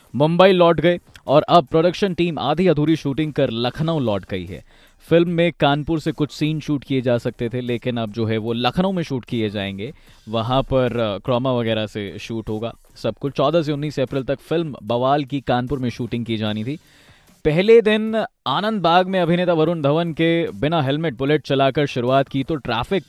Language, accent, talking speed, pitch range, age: Hindi, native, 195 wpm, 120-165 Hz, 20-39